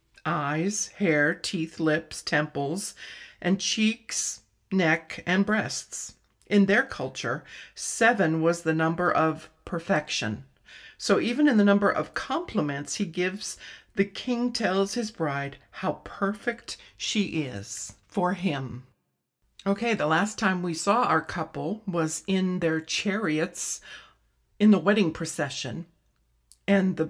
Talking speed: 125 wpm